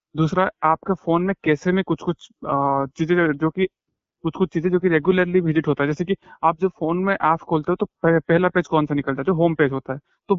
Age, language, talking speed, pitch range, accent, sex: 20-39, Hindi, 245 wpm, 155-185 Hz, native, male